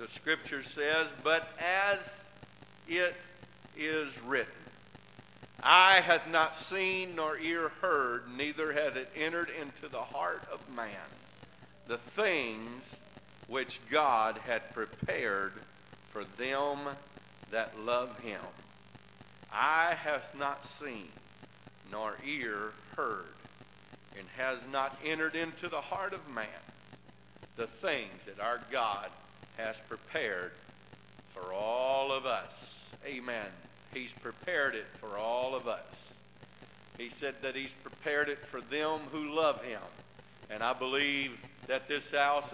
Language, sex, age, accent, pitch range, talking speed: English, male, 50-69, American, 125-160 Hz, 125 wpm